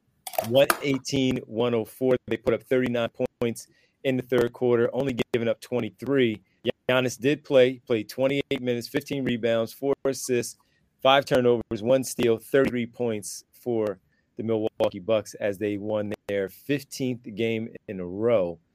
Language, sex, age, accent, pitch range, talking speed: English, male, 30-49, American, 105-130 Hz, 140 wpm